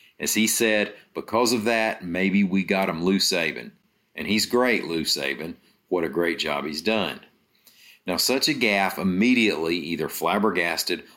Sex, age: male, 40-59